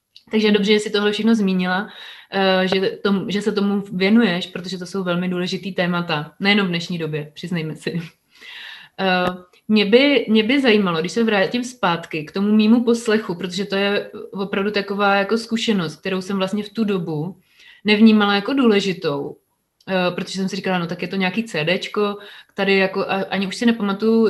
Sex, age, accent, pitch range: female, 30-49, native, 185-220 Hz